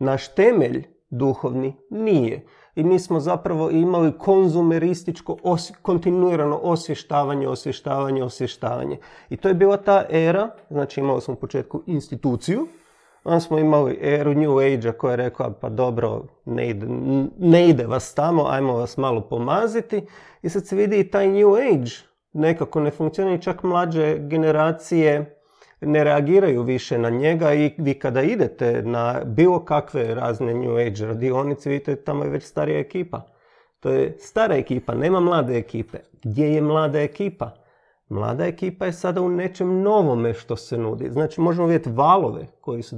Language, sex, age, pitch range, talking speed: Croatian, male, 40-59, 130-180 Hz, 155 wpm